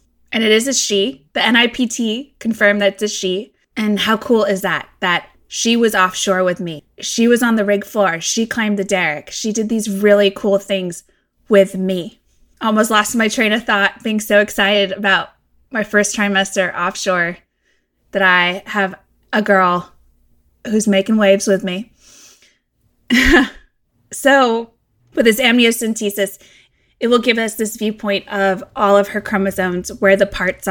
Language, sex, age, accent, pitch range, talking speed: English, female, 20-39, American, 190-225 Hz, 160 wpm